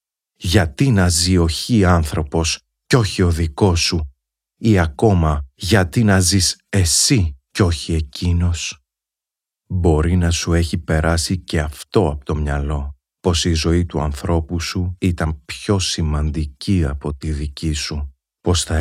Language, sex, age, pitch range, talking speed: Greek, male, 40-59, 75-85 Hz, 140 wpm